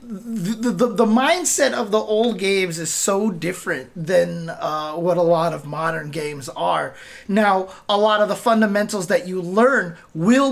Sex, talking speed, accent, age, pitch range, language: male, 170 wpm, American, 30-49, 165-215 Hz, English